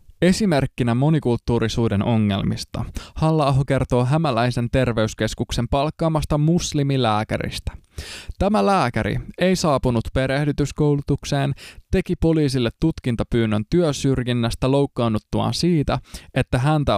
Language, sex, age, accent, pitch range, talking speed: Finnish, male, 20-39, native, 110-150 Hz, 80 wpm